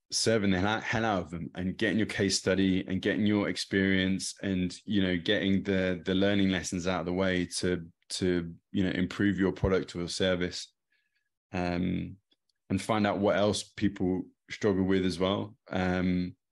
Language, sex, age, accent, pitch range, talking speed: English, male, 20-39, British, 90-100 Hz, 180 wpm